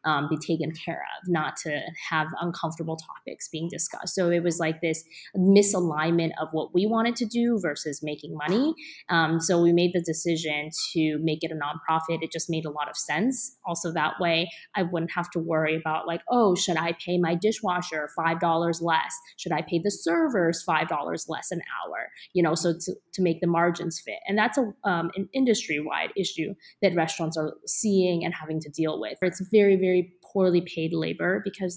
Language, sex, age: English, female, 20-39